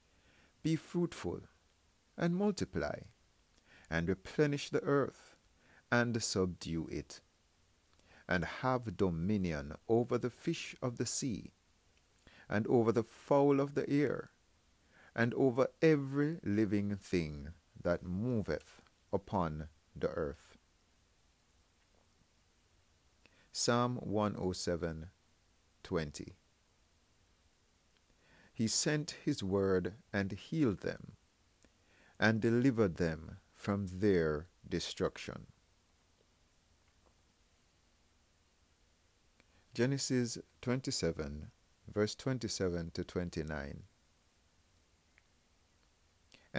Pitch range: 80-115 Hz